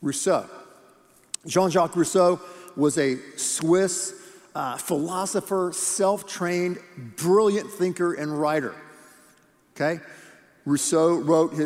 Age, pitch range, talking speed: 50-69, 160-195 Hz, 80 wpm